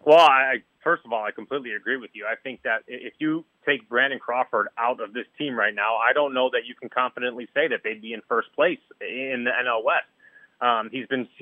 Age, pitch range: 30-49, 120-160 Hz